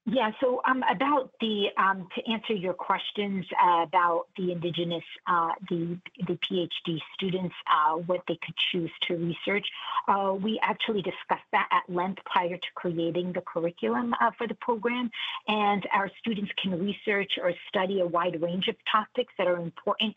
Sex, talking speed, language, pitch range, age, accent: female, 170 wpm, English, 175-215 Hz, 50-69, American